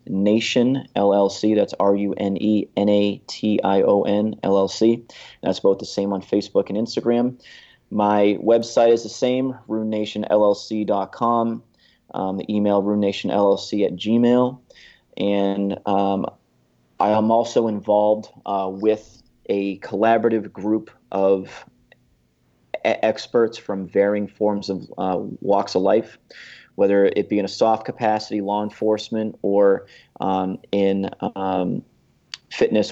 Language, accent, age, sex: English, American, 30-49, male